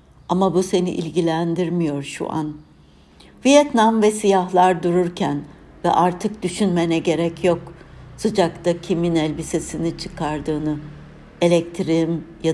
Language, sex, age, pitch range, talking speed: Turkish, female, 60-79, 155-185 Hz, 100 wpm